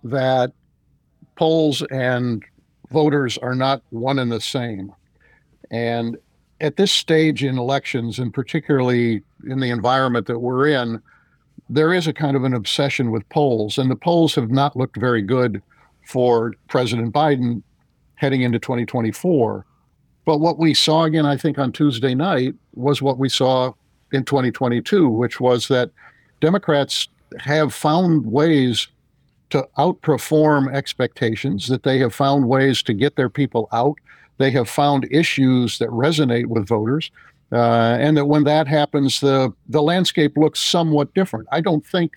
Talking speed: 150 wpm